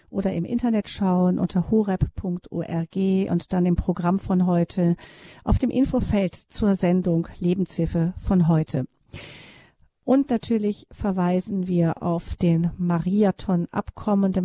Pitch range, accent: 185-210 Hz, German